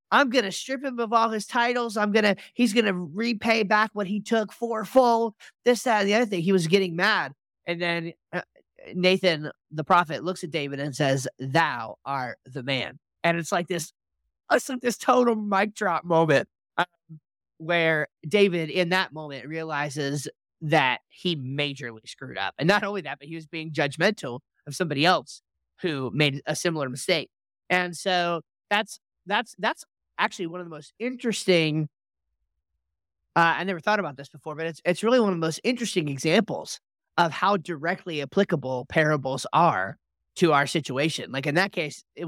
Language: English